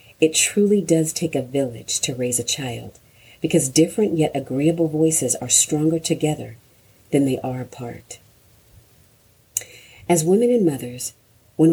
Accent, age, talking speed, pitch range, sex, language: American, 40-59, 140 wpm, 125-165 Hz, female, English